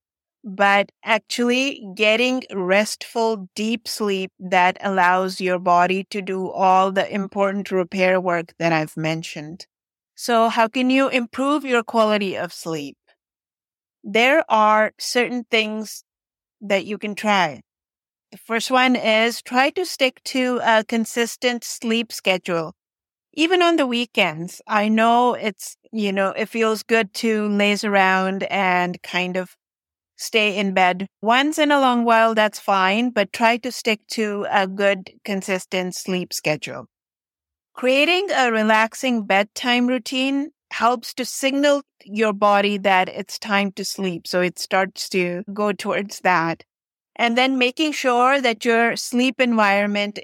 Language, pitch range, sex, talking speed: English, 190-245 Hz, female, 140 wpm